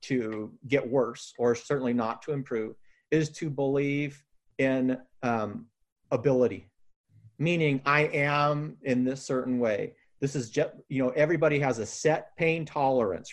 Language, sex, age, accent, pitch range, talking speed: English, male, 40-59, American, 125-160 Hz, 145 wpm